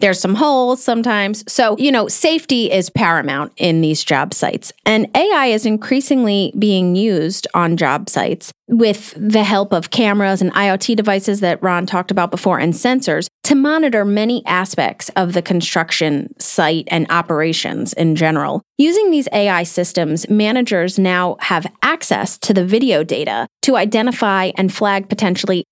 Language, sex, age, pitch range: English, female, 30-49, 175-225 Hz